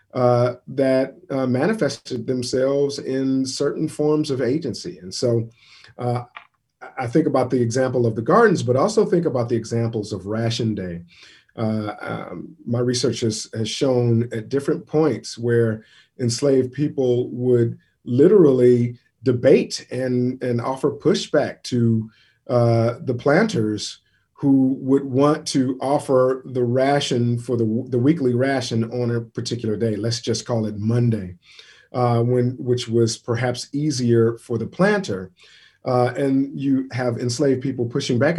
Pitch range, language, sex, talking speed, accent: 115-135 Hz, English, male, 140 wpm, American